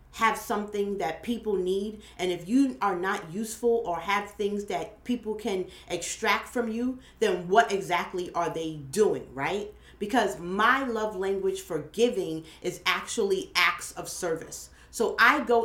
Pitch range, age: 185-240 Hz, 40-59